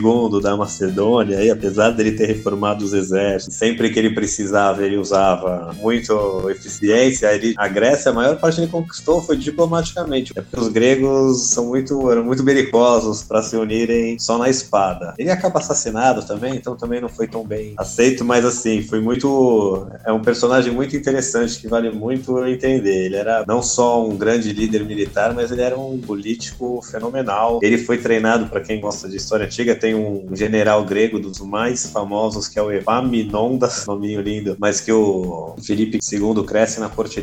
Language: Portuguese